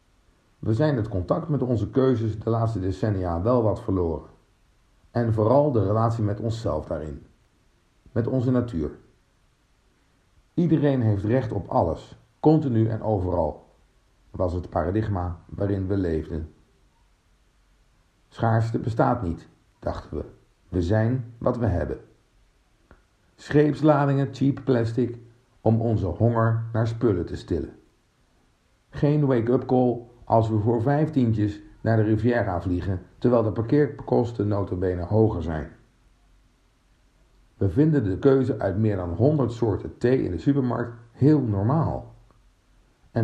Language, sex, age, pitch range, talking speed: Dutch, male, 50-69, 95-125 Hz, 125 wpm